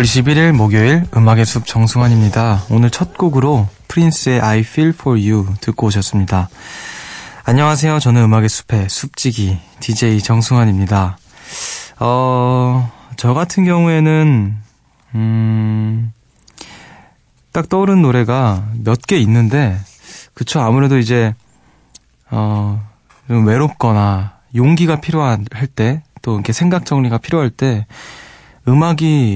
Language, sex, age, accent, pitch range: Korean, male, 20-39, native, 110-145 Hz